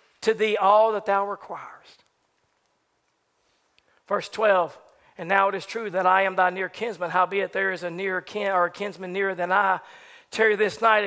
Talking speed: 185 wpm